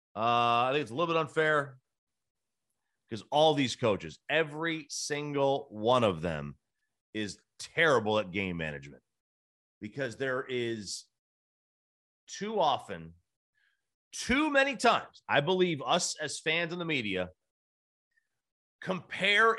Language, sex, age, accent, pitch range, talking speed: English, male, 30-49, American, 110-175 Hz, 120 wpm